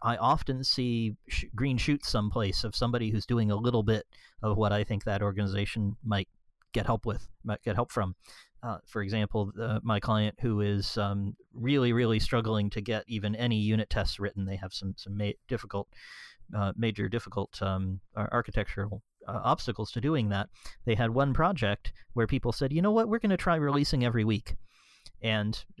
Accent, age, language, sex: American, 40-59, English, male